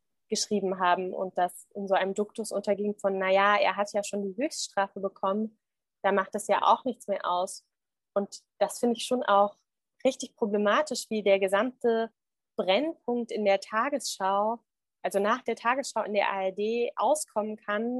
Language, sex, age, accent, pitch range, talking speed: German, female, 20-39, German, 205-240 Hz, 165 wpm